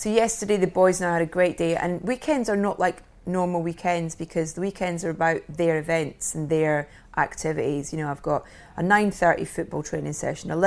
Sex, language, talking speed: female, English, 205 wpm